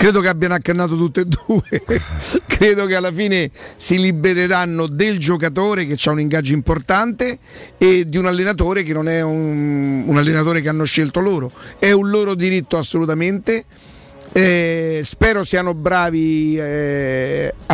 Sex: male